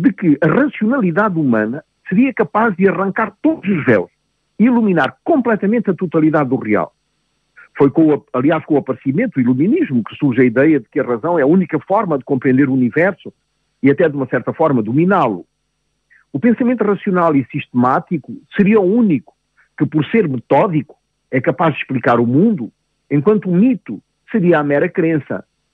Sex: male